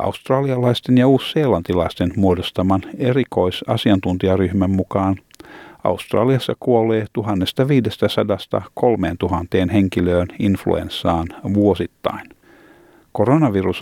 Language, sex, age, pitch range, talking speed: Finnish, male, 50-69, 90-115 Hz, 55 wpm